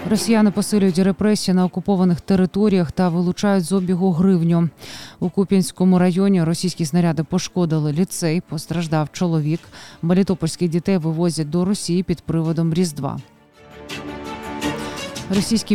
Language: Ukrainian